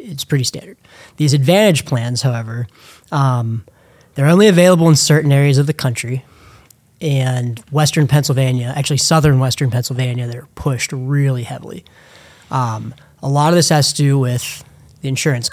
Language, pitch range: English, 125-150 Hz